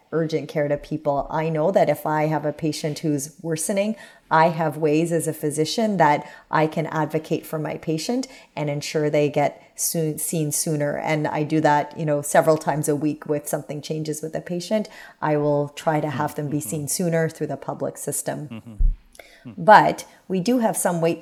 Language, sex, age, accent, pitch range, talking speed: English, female, 30-49, American, 150-165 Hz, 195 wpm